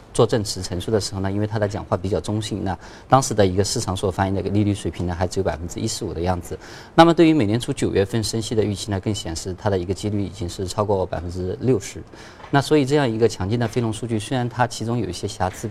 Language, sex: Chinese, male